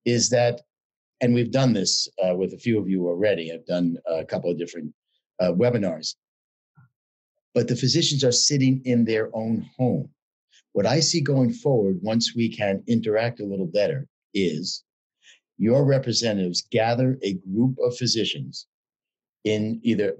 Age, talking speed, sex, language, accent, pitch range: 50-69, 155 wpm, male, English, American, 110-130 Hz